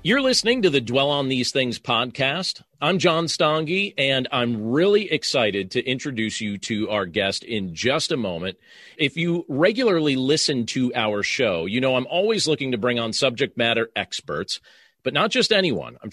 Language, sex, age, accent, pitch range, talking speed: English, male, 40-59, American, 120-175 Hz, 180 wpm